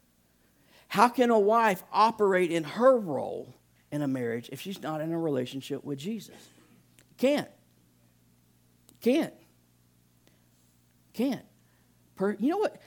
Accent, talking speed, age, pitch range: American, 120 wpm, 50-69, 110-180 Hz